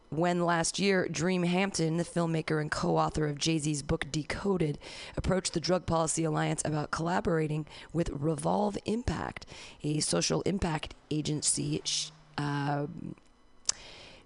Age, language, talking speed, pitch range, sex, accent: 30-49, English, 120 wpm, 155-180 Hz, female, American